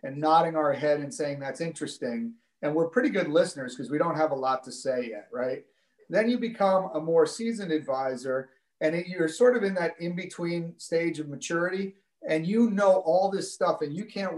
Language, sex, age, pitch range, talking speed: English, male, 40-59, 145-180 Hz, 205 wpm